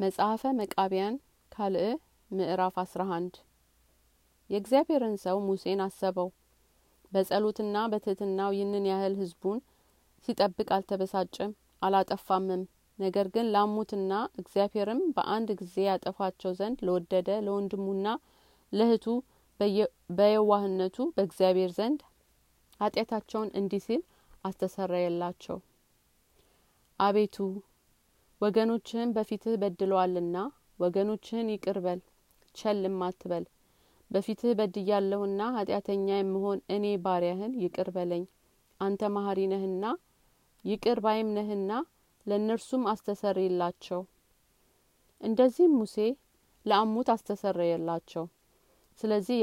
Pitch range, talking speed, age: 185-215 Hz, 75 wpm, 30-49